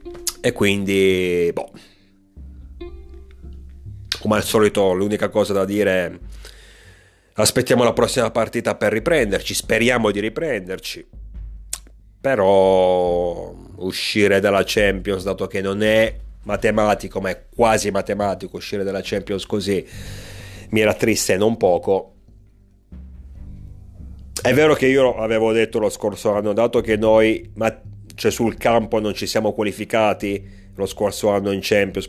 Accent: native